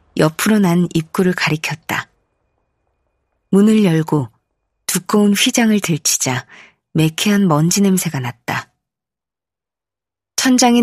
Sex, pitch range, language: female, 135-205 Hz, Korean